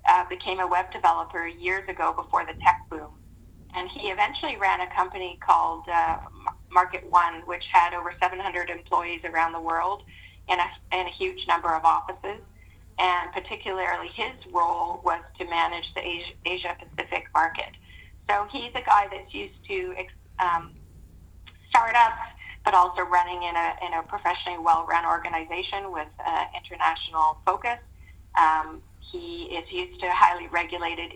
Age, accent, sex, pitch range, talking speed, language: 30-49, American, female, 165-185 Hz, 155 wpm, English